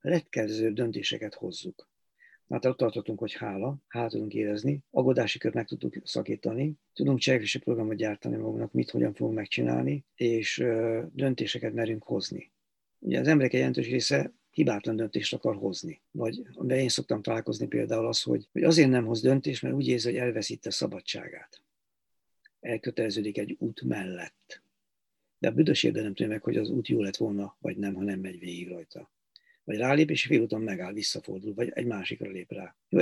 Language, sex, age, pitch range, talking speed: Hungarian, male, 50-69, 100-130 Hz, 165 wpm